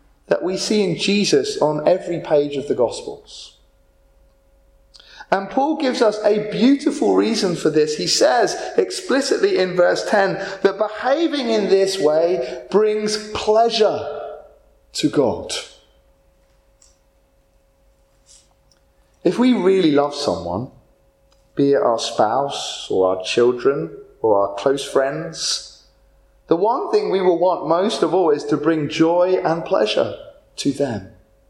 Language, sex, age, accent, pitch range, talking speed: English, male, 30-49, British, 160-240 Hz, 130 wpm